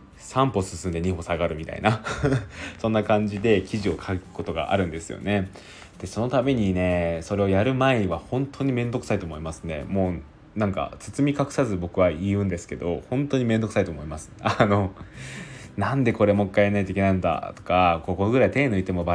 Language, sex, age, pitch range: Japanese, male, 20-39, 85-105 Hz